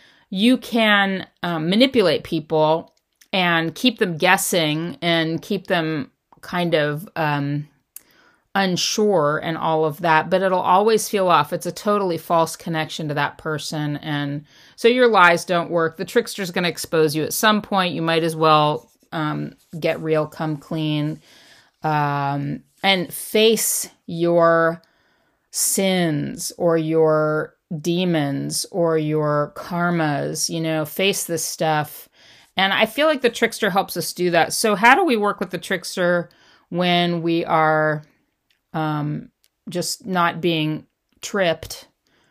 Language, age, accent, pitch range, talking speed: English, 40-59, American, 155-195 Hz, 140 wpm